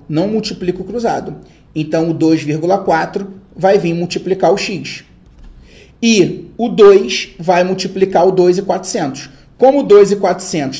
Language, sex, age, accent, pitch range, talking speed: Portuguese, male, 30-49, Brazilian, 160-220 Hz, 120 wpm